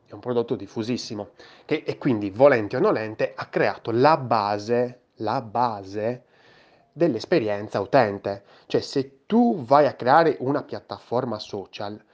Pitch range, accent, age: 110-150 Hz, native, 20-39